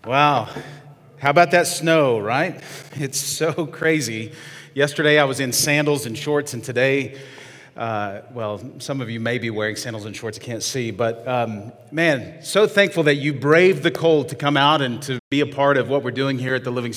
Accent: American